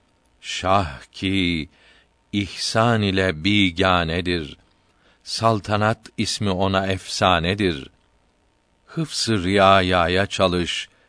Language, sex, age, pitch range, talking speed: Turkish, male, 50-69, 85-105 Hz, 65 wpm